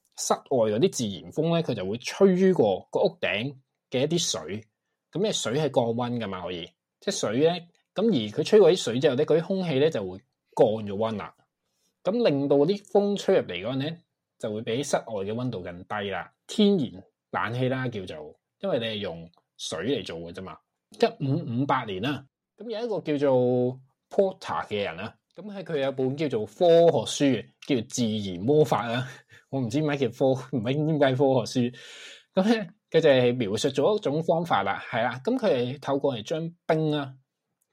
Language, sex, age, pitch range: Chinese, male, 20-39, 125-165 Hz